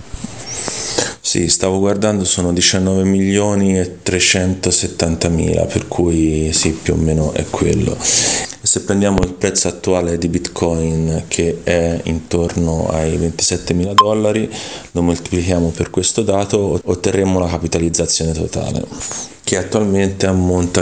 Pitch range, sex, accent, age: 80-100 Hz, male, native, 30-49